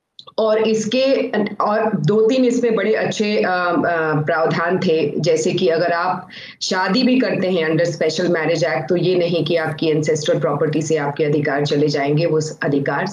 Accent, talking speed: native, 100 wpm